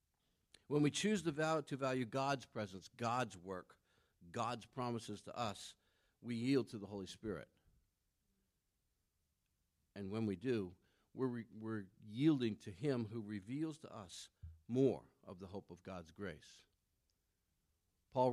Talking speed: 130 wpm